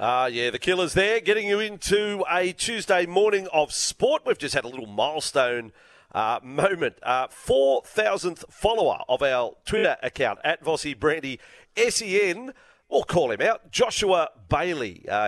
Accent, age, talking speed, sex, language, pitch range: Australian, 40-59, 155 wpm, male, English, 130-195 Hz